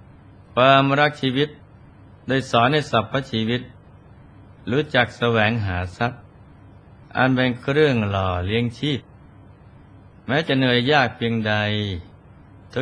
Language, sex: Thai, male